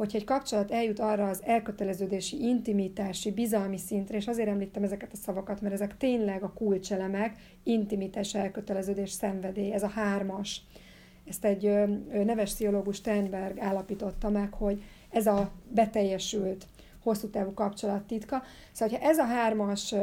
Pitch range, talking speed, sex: 200-225 Hz, 145 wpm, female